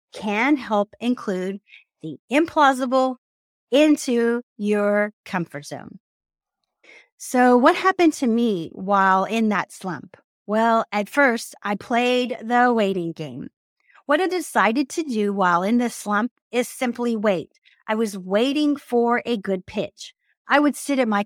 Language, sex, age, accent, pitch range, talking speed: English, female, 40-59, American, 195-255 Hz, 140 wpm